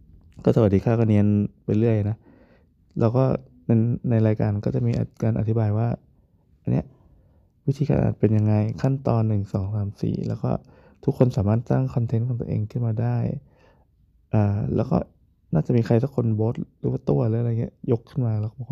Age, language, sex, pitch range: 20-39, Thai, male, 105-120 Hz